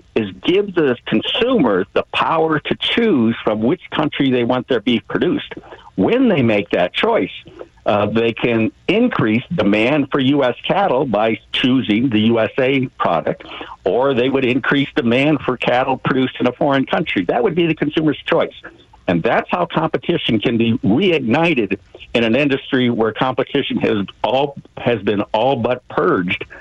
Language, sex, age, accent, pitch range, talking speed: English, male, 60-79, American, 110-140 Hz, 160 wpm